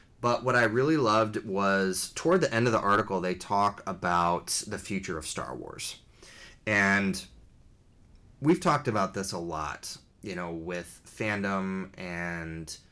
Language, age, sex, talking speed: English, 20-39, male, 150 wpm